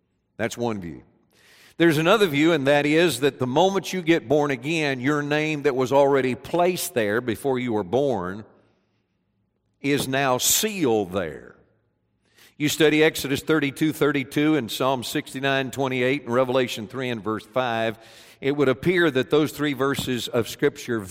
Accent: American